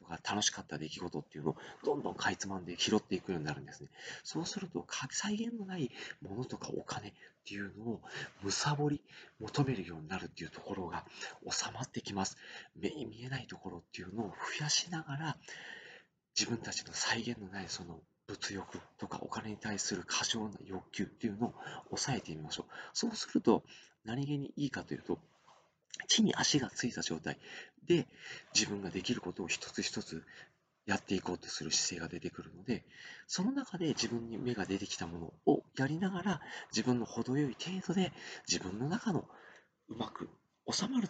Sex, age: male, 40-59